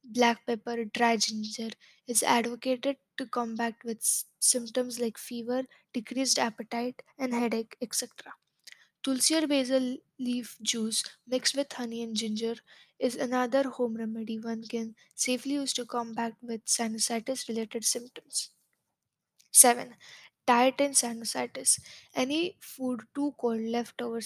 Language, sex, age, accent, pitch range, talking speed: English, female, 10-29, Indian, 230-255 Hz, 120 wpm